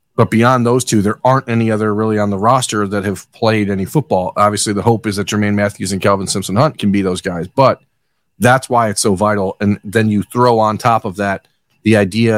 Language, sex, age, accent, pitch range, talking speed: English, male, 40-59, American, 100-120 Hz, 235 wpm